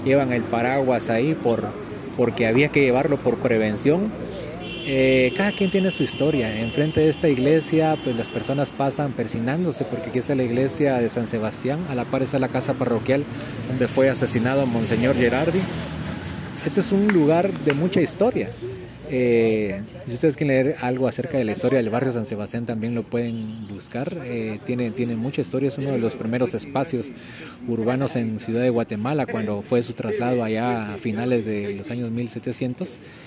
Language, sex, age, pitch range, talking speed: Spanish, male, 30-49, 115-140 Hz, 175 wpm